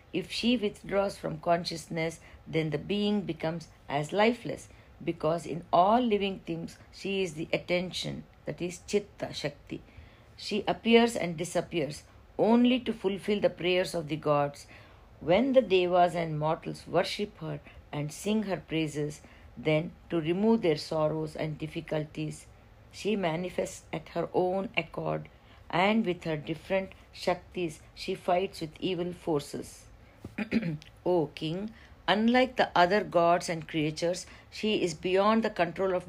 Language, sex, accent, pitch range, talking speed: English, female, Indian, 150-190 Hz, 140 wpm